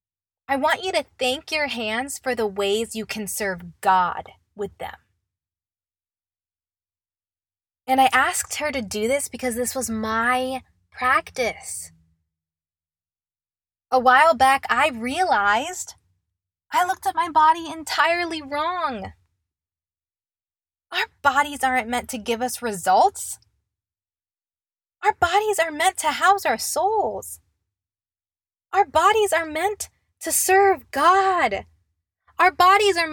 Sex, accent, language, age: female, American, English, 20-39